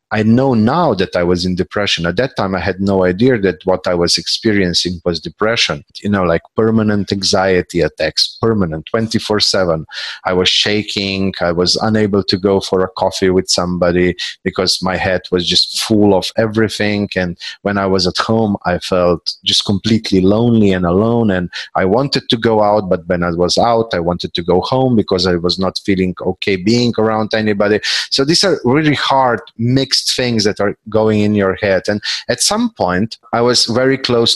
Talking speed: 190 wpm